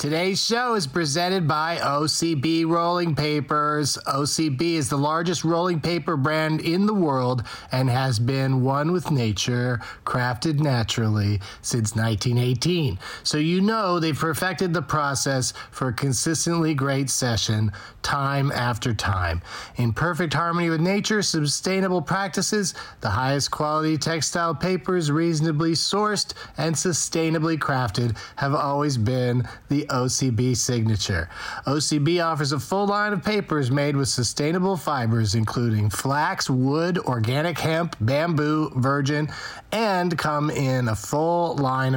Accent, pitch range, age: American, 125-170 Hz, 30-49